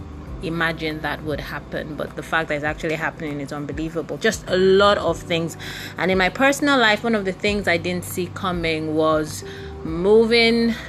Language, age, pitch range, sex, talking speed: English, 30-49, 150-185 Hz, female, 180 wpm